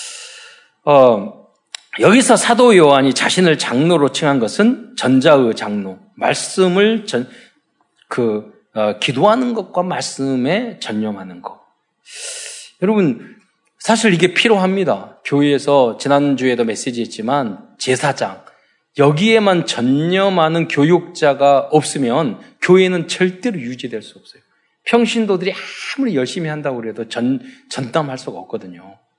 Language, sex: Korean, male